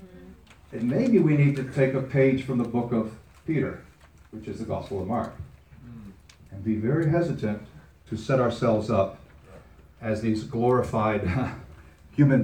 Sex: male